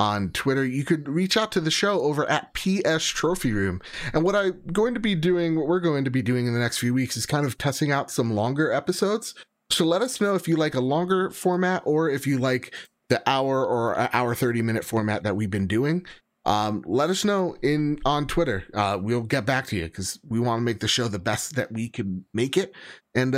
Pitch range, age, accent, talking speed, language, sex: 105-150 Hz, 30-49, American, 240 wpm, English, male